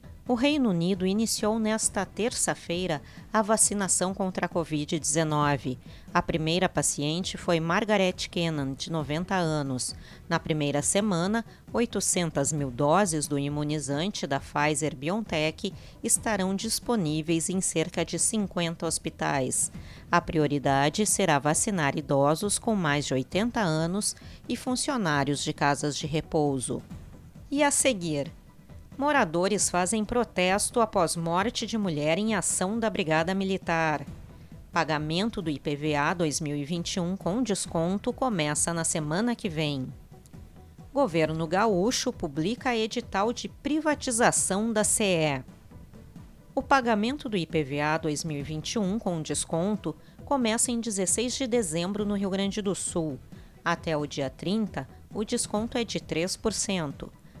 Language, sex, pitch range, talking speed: Portuguese, female, 155-215 Hz, 120 wpm